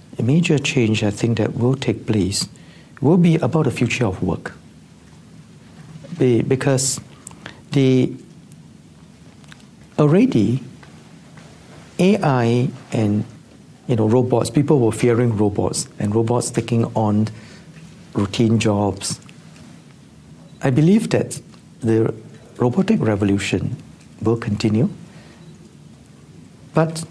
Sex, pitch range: male, 115-155 Hz